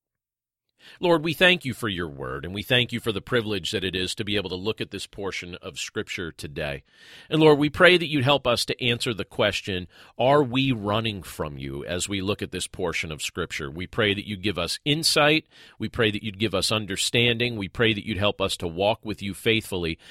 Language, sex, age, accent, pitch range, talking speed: English, male, 40-59, American, 95-135 Hz, 235 wpm